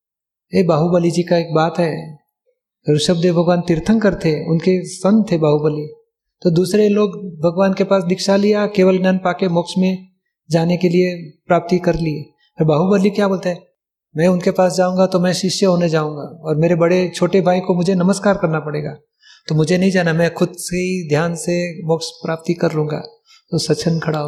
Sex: male